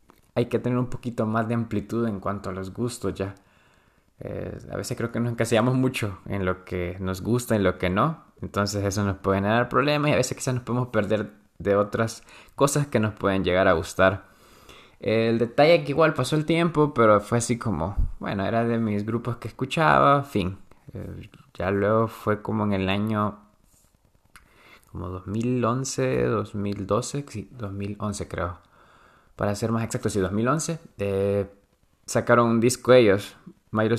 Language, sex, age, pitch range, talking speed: Spanish, male, 20-39, 95-115 Hz, 175 wpm